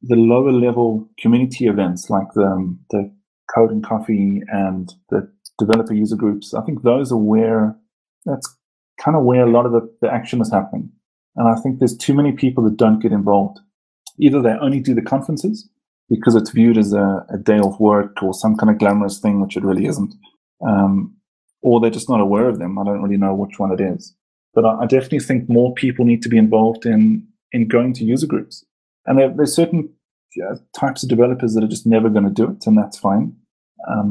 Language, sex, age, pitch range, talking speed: English, male, 30-49, 105-130 Hz, 210 wpm